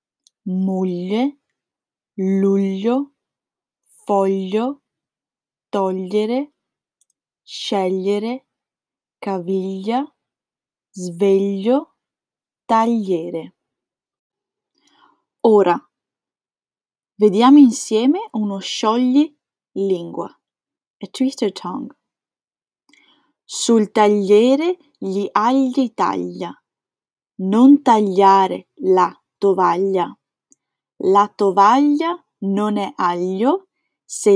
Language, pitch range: Italian, 195-270 Hz